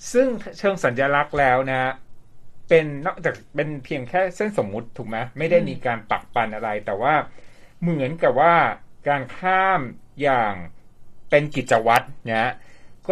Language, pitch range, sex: Thai, 115-170 Hz, male